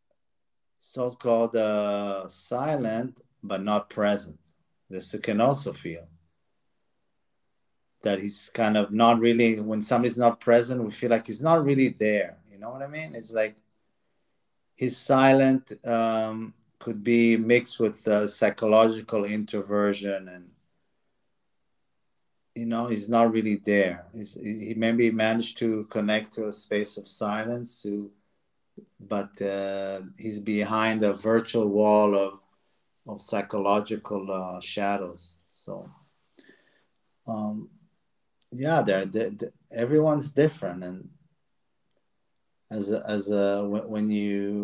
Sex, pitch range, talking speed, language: male, 100-115 Hz, 120 wpm, English